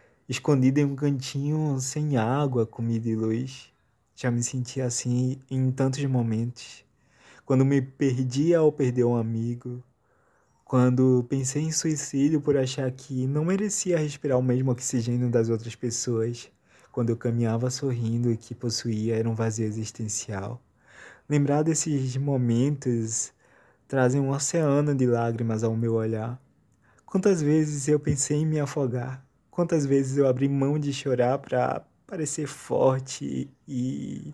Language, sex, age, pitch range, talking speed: Portuguese, male, 20-39, 120-145 Hz, 140 wpm